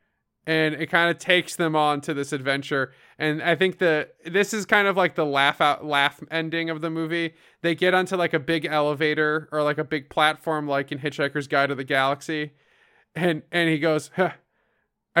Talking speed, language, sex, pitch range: 200 wpm, English, male, 135-160 Hz